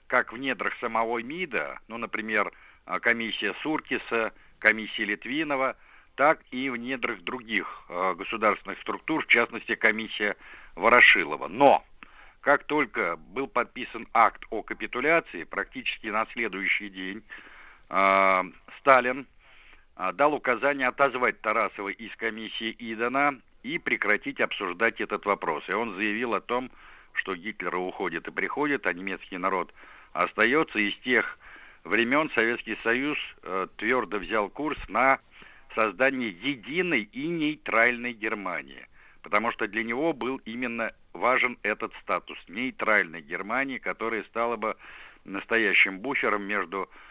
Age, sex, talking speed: 60-79, male, 120 wpm